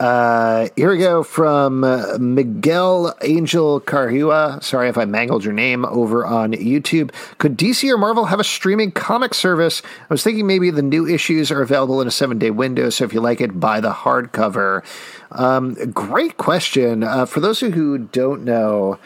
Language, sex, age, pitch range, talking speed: English, male, 40-59, 115-150 Hz, 180 wpm